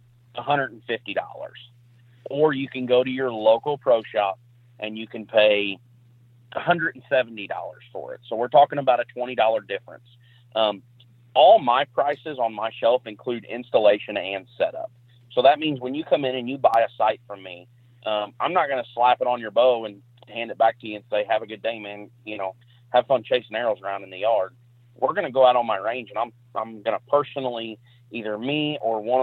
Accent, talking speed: American, 205 wpm